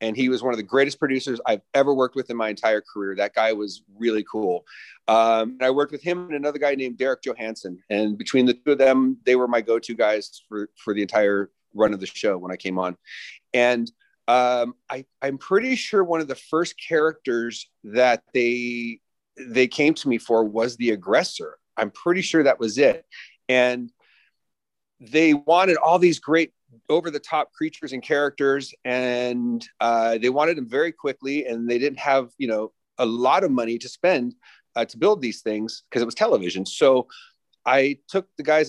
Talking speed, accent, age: 195 wpm, American, 30-49